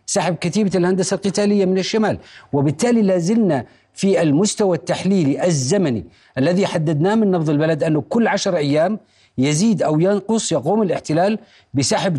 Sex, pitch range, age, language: male, 160-210 Hz, 50-69, Arabic